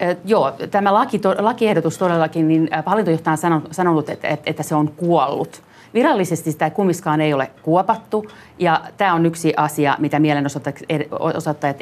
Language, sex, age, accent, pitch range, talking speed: Finnish, female, 40-59, native, 140-170 Hz, 140 wpm